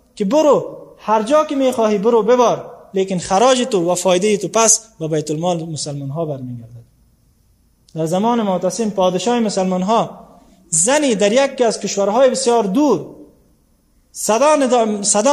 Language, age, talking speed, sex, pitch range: English, 20-39, 145 wpm, male, 170-235 Hz